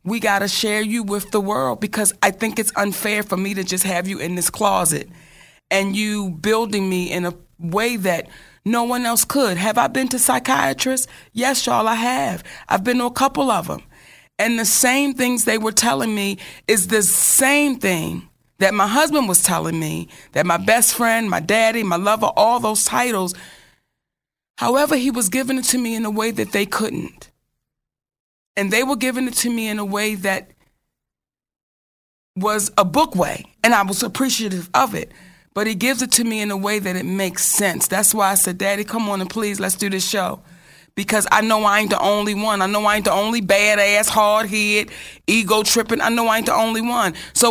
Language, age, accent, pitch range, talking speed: English, 30-49, American, 195-235 Hz, 210 wpm